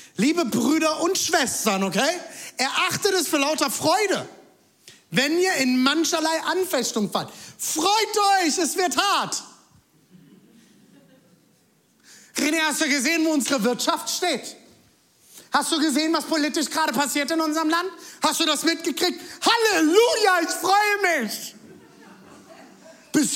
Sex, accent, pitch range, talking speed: male, German, 270-345 Hz, 125 wpm